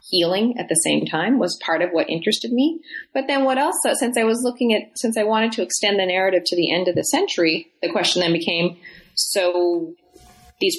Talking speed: 215 wpm